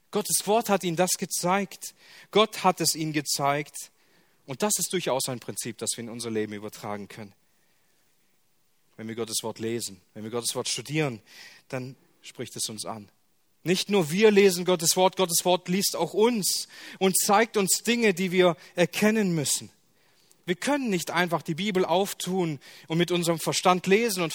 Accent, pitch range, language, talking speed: German, 135-190 Hz, German, 175 wpm